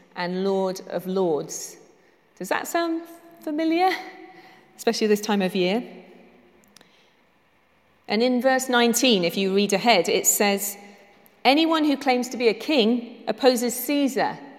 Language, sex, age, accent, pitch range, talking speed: English, female, 40-59, British, 180-255 Hz, 130 wpm